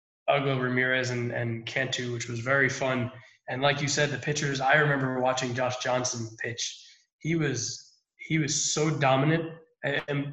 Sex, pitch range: male, 125-150 Hz